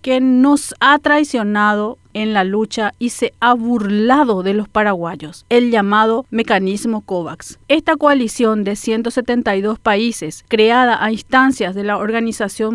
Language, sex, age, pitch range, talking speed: Spanish, female, 40-59, 215-270 Hz, 135 wpm